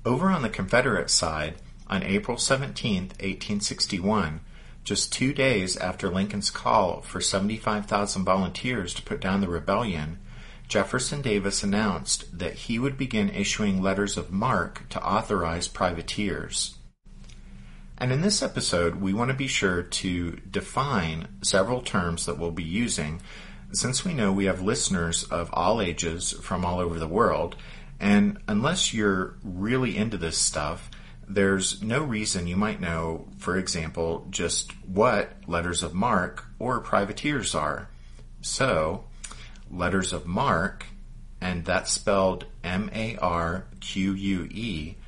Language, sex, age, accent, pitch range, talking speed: English, male, 50-69, American, 85-105 Hz, 130 wpm